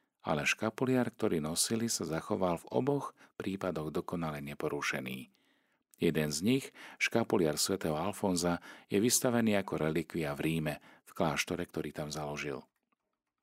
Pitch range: 80-105 Hz